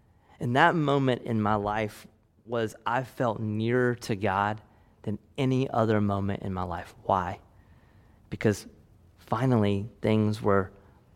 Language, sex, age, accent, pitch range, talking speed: English, male, 30-49, American, 105-175 Hz, 130 wpm